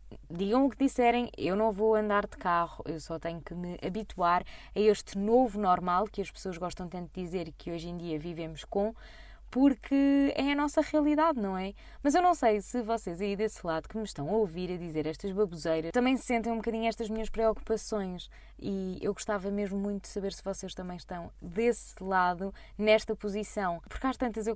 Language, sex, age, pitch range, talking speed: Portuguese, female, 20-39, 180-225 Hz, 205 wpm